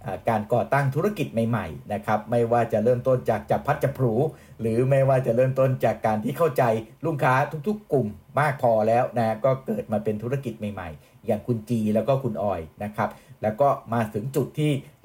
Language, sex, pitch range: Thai, male, 105-125 Hz